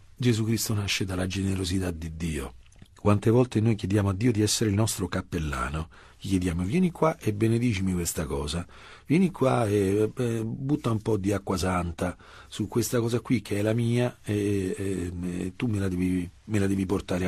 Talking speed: 190 wpm